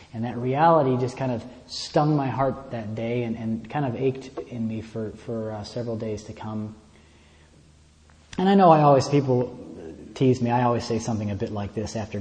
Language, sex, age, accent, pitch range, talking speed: English, male, 30-49, American, 95-130 Hz, 205 wpm